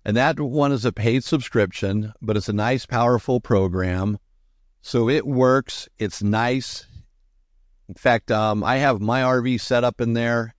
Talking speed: 165 wpm